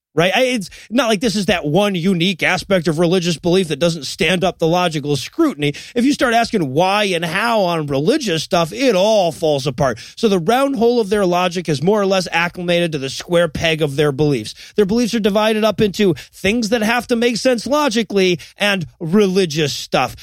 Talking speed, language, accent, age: 205 wpm, English, American, 30-49